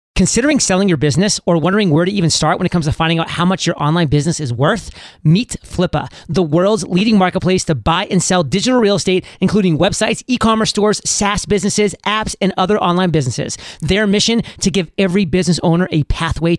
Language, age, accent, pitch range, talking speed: English, 30-49, American, 170-200 Hz, 205 wpm